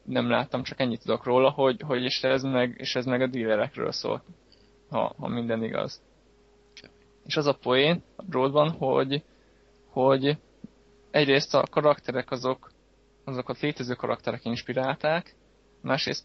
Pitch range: 125-145 Hz